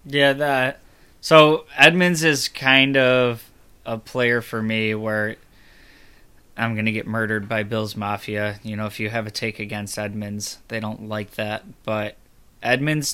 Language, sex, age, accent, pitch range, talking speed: English, male, 20-39, American, 110-125 Hz, 155 wpm